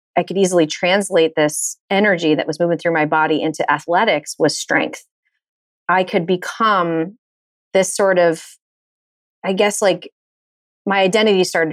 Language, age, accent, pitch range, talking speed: English, 30-49, American, 160-200 Hz, 145 wpm